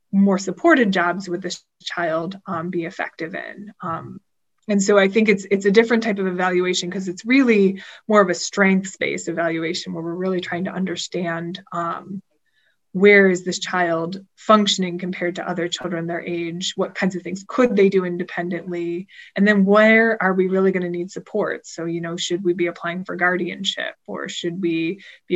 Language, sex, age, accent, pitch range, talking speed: English, female, 20-39, American, 175-200 Hz, 190 wpm